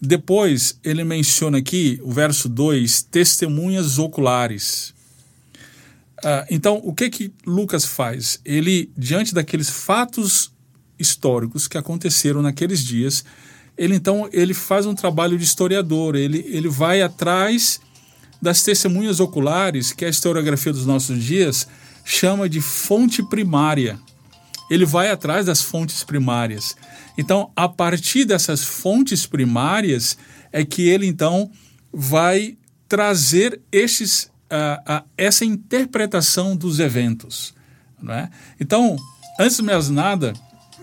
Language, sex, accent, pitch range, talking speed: Portuguese, male, Brazilian, 130-185 Hz, 115 wpm